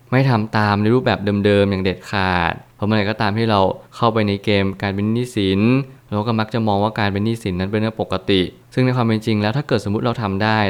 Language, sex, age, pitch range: Thai, male, 20-39, 100-120 Hz